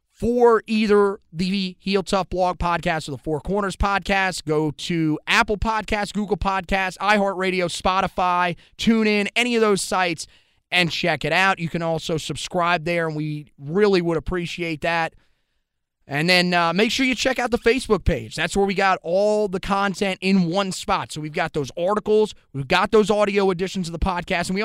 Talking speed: 185 wpm